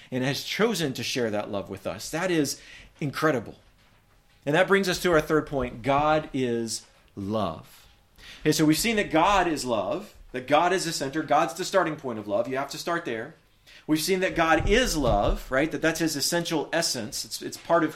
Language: English